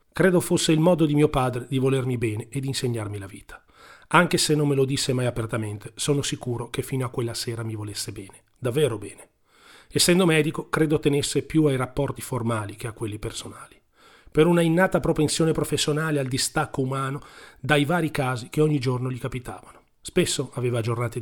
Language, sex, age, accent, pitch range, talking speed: Italian, male, 40-59, native, 120-150 Hz, 185 wpm